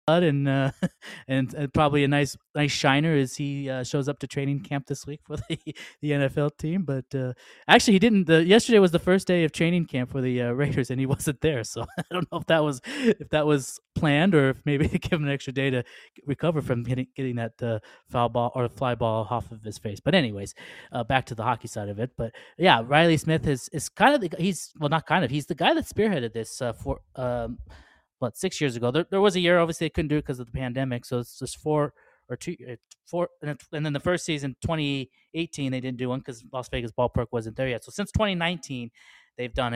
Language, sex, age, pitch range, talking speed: English, male, 20-39, 120-155 Hz, 245 wpm